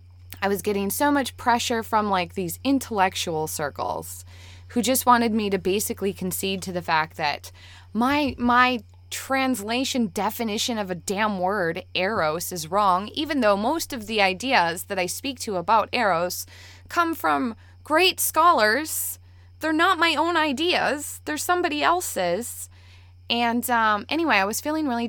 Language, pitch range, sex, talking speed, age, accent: English, 175-245 Hz, female, 155 wpm, 20-39, American